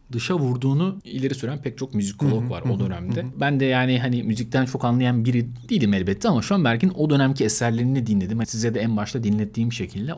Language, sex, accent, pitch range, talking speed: Turkish, male, native, 110-130 Hz, 190 wpm